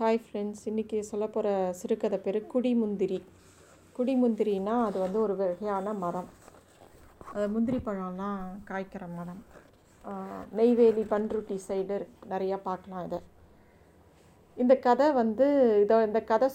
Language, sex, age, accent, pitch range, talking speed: Tamil, female, 30-49, native, 195-230 Hz, 110 wpm